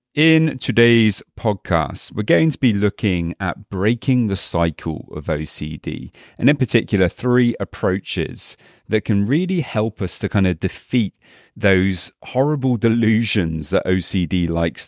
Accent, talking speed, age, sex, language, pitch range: British, 135 wpm, 30-49, male, English, 95-120 Hz